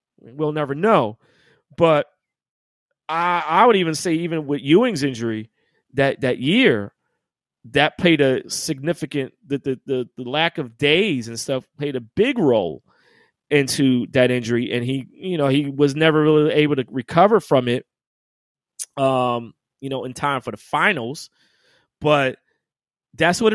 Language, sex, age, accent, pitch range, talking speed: English, male, 30-49, American, 125-160 Hz, 155 wpm